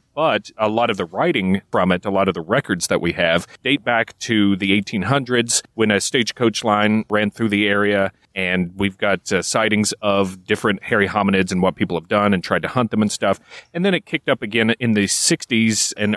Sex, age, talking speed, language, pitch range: male, 30-49, 225 wpm, English, 100-115 Hz